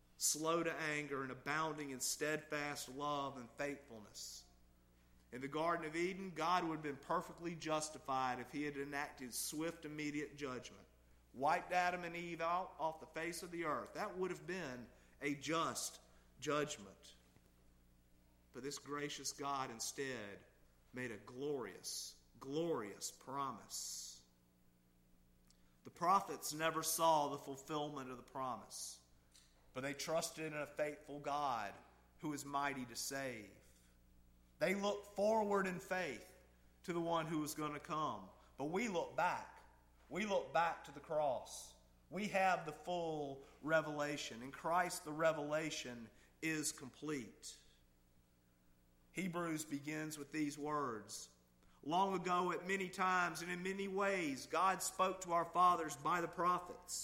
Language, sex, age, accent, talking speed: English, male, 50-69, American, 140 wpm